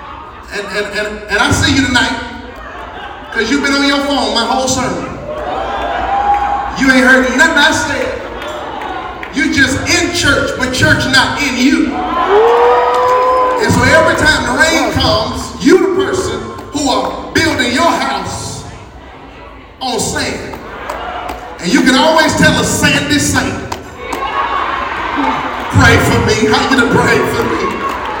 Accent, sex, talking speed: American, male, 140 wpm